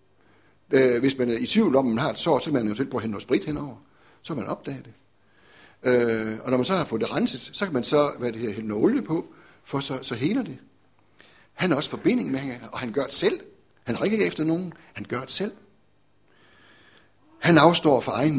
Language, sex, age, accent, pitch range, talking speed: Danish, male, 60-79, native, 115-150 Hz, 225 wpm